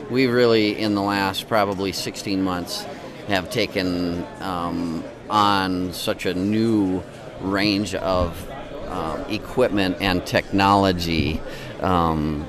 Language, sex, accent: English, male, American